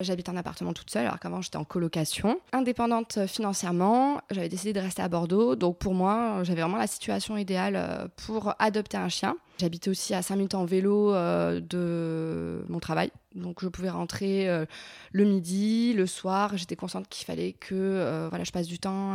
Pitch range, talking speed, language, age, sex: 175-205 Hz, 180 wpm, French, 20-39, female